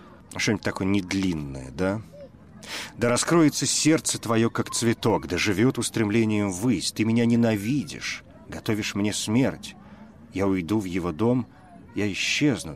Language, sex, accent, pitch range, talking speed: Russian, male, native, 90-120 Hz, 125 wpm